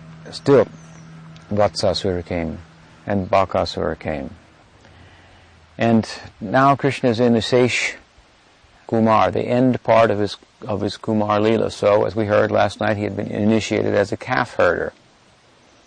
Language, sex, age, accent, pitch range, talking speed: English, male, 50-69, American, 95-115 Hz, 140 wpm